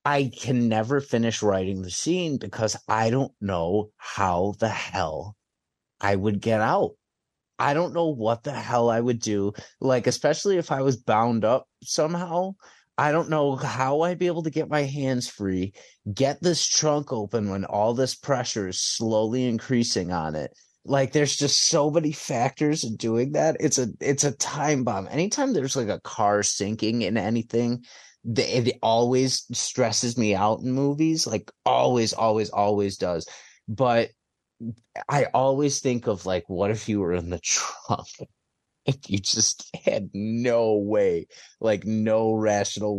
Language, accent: English, American